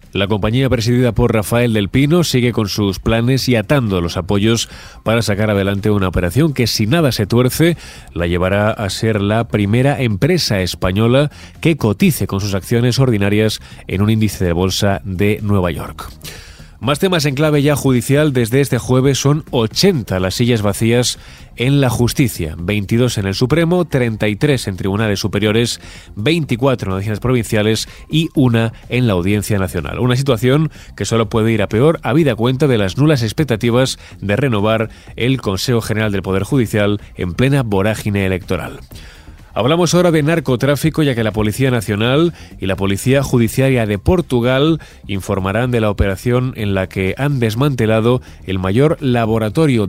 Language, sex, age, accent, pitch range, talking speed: Spanish, male, 20-39, Spanish, 100-130 Hz, 165 wpm